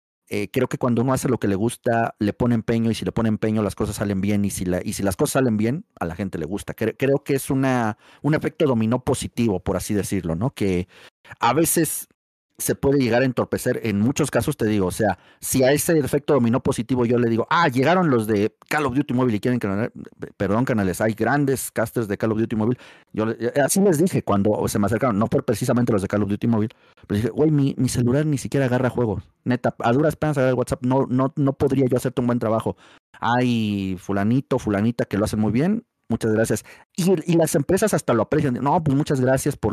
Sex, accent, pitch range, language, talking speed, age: male, Mexican, 105-135 Hz, Spanish, 235 wpm, 40-59